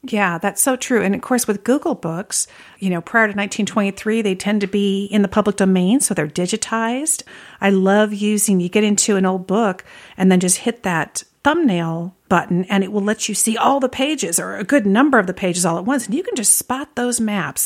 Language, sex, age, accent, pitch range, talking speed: English, female, 50-69, American, 180-235 Hz, 230 wpm